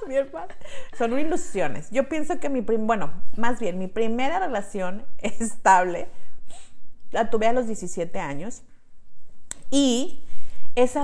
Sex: female